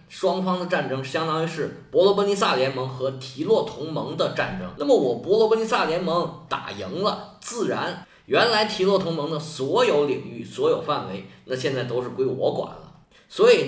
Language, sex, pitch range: Chinese, male, 135-215 Hz